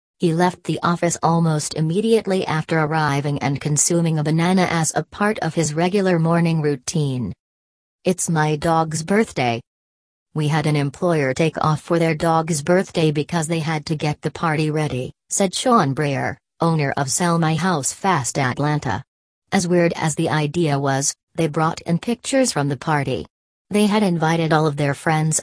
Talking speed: 170 wpm